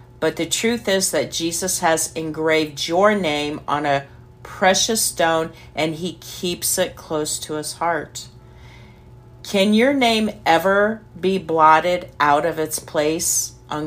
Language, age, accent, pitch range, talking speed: English, 50-69, American, 150-185 Hz, 145 wpm